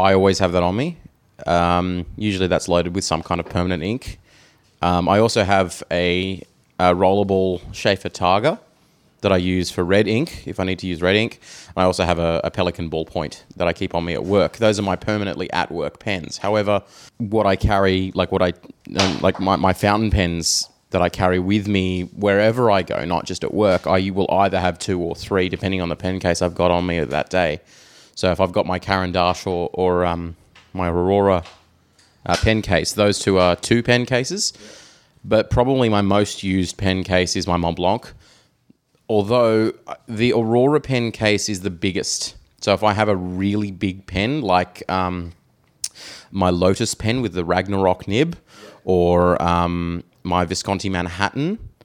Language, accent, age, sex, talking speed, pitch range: English, Australian, 20-39, male, 190 wpm, 90-105 Hz